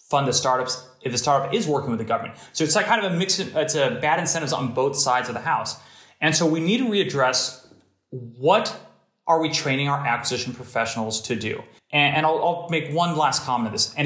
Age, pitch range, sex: 30-49, 125-160 Hz, male